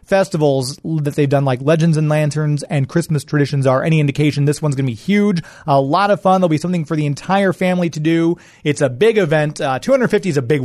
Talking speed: 230 wpm